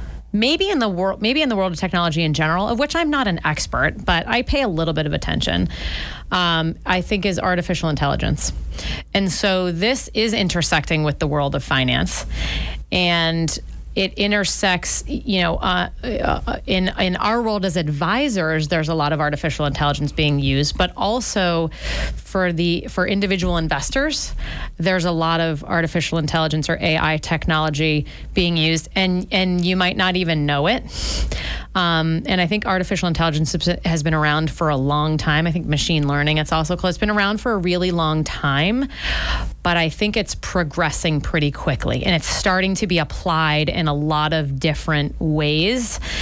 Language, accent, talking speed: English, American, 175 wpm